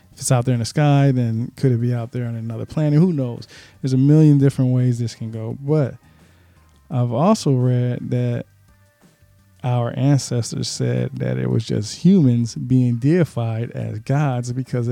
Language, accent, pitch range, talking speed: English, American, 120-145 Hz, 175 wpm